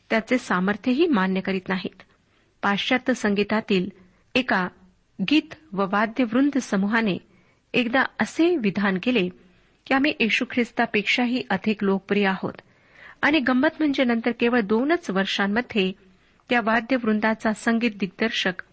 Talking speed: 105 wpm